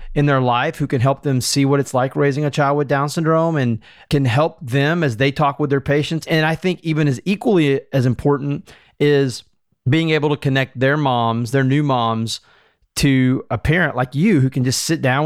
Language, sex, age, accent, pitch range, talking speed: English, male, 30-49, American, 125-155 Hz, 215 wpm